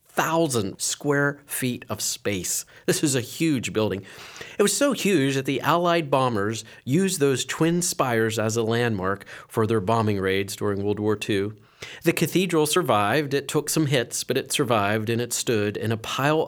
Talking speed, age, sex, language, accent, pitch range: 180 wpm, 40-59, male, English, American, 110-145 Hz